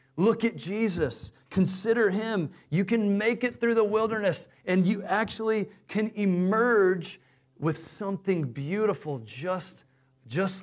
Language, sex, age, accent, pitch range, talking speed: English, male, 40-59, American, 145-190 Hz, 125 wpm